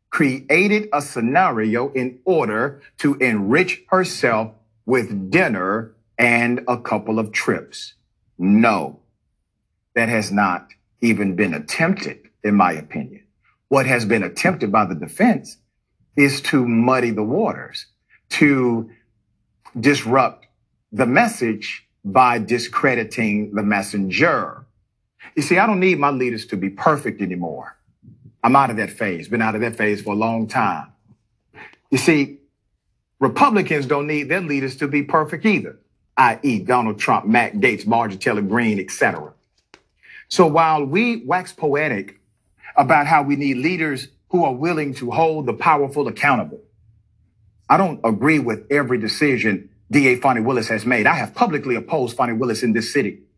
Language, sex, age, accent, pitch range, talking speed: English, male, 40-59, American, 110-145 Hz, 145 wpm